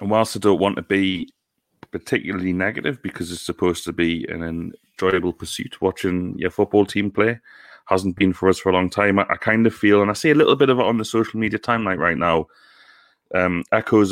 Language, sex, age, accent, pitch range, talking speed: English, male, 30-49, British, 90-105 Hz, 220 wpm